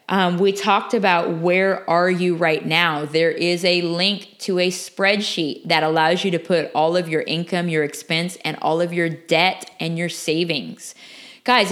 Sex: female